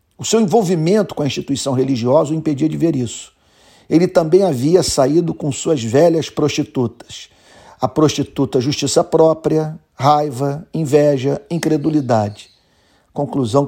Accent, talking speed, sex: Brazilian, 125 wpm, male